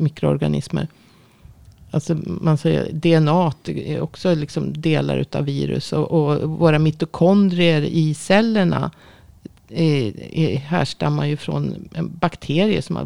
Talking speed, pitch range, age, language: 115 wpm, 150-180 Hz, 50-69, Swedish